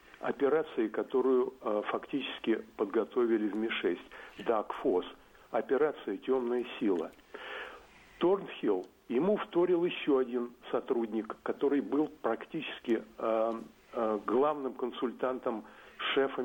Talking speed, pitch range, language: 90 wpm, 130-200 Hz, Russian